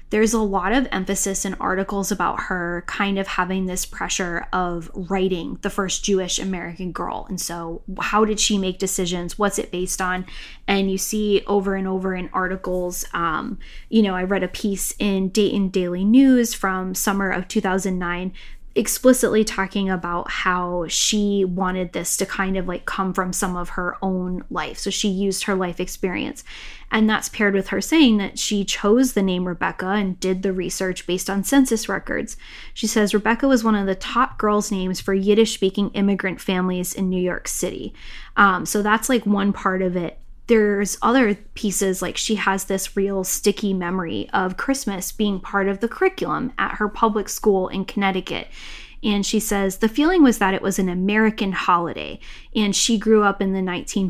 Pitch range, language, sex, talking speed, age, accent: 185-210 Hz, English, female, 185 wpm, 10-29, American